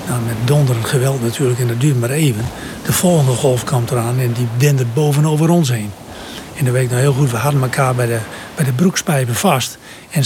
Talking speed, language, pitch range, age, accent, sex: 215 wpm, Dutch, 130-175 Hz, 60-79, Dutch, male